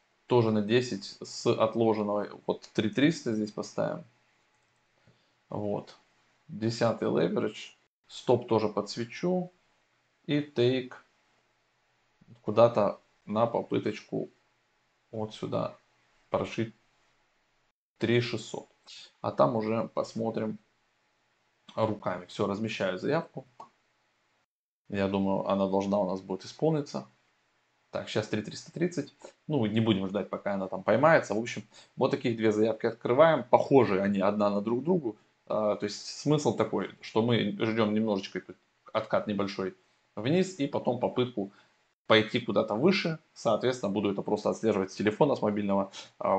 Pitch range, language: 100-125 Hz, Russian